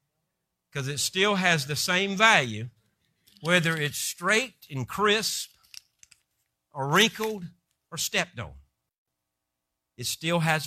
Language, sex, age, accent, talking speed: English, male, 60-79, American, 115 wpm